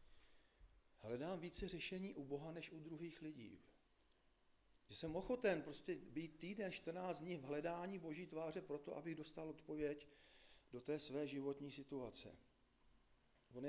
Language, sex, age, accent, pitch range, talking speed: Czech, male, 50-69, native, 135-170 Hz, 135 wpm